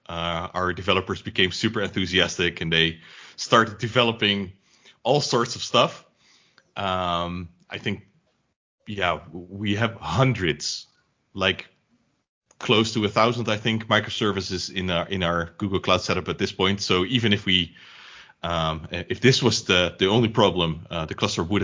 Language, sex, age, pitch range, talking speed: English, male, 30-49, 85-110 Hz, 155 wpm